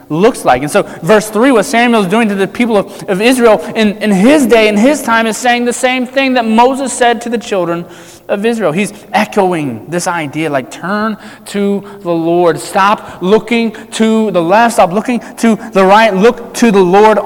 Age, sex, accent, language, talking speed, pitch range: 20-39, male, American, English, 205 wpm, 155-220 Hz